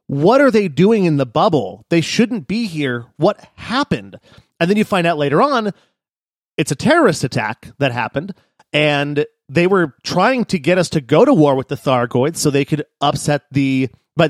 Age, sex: 30-49, male